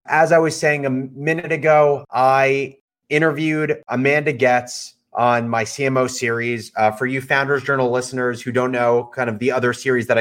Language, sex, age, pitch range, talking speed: English, male, 30-49, 115-135 Hz, 175 wpm